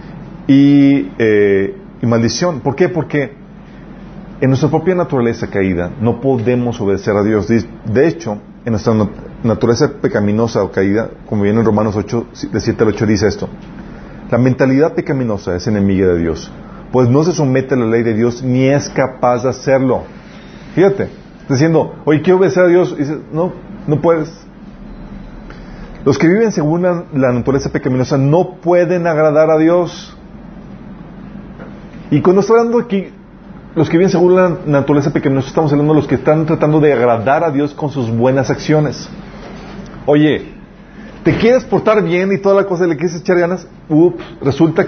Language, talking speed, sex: Spanish, 165 wpm, male